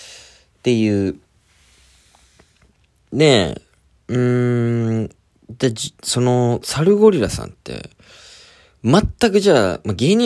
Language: Japanese